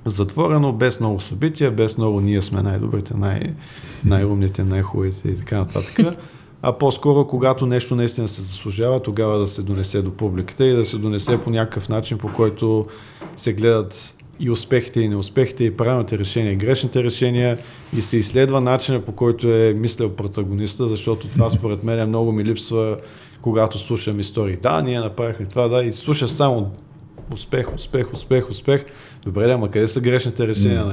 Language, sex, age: Bulgarian, male, 40-59